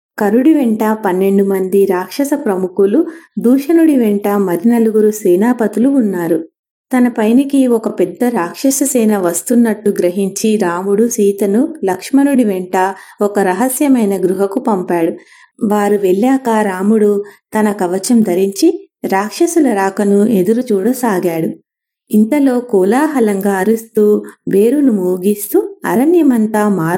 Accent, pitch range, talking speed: Indian, 195-245 Hz, 95 wpm